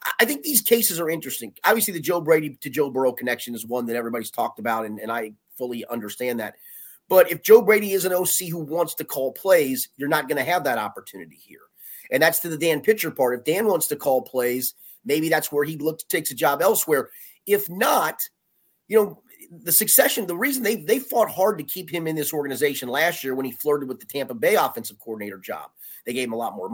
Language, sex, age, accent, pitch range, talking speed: English, male, 30-49, American, 130-195 Hz, 235 wpm